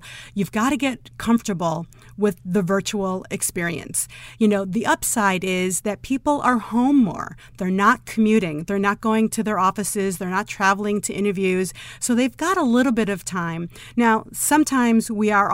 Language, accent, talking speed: English, American, 175 wpm